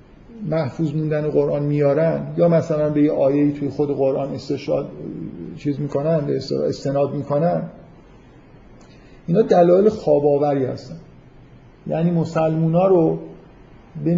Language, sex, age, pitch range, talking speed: Persian, male, 50-69, 145-180 Hz, 115 wpm